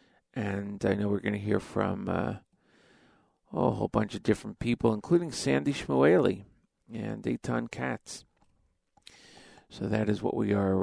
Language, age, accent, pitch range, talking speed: English, 40-59, American, 105-140 Hz, 150 wpm